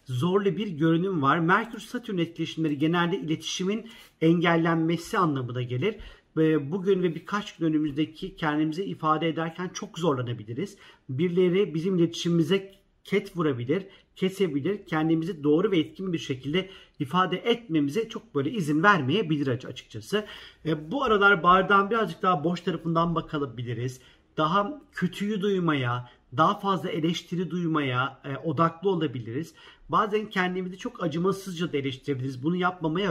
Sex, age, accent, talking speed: male, 50-69, native, 120 wpm